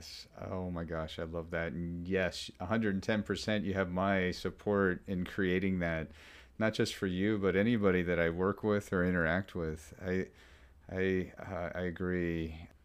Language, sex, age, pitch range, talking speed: English, male, 30-49, 80-100 Hz, 175 wpm